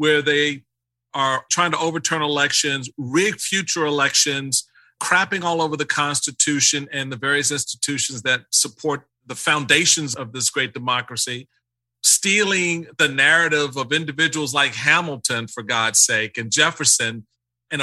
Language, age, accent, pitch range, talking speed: English, 40-59, American, 125-160 Hz, 135 wpm